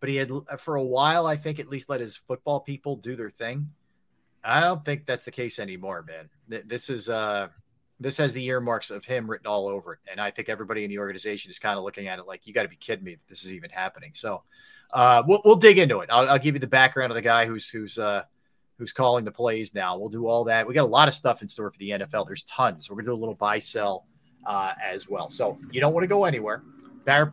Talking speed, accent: 270 wpm, American